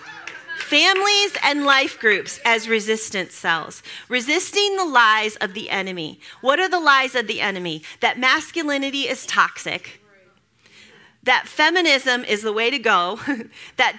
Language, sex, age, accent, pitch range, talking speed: English, female, 40-59, American, 225-355 Hz, 135 wpm